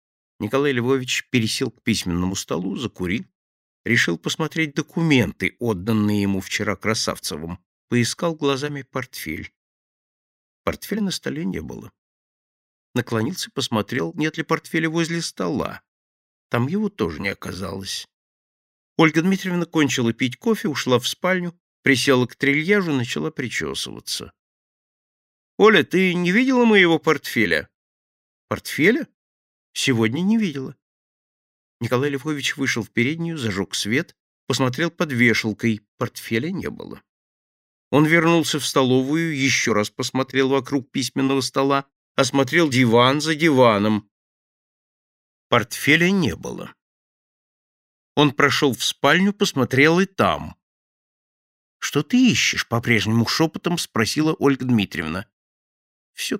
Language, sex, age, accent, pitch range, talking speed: Russian, male, 50-69, native, 110-160 Hz, 110 wpm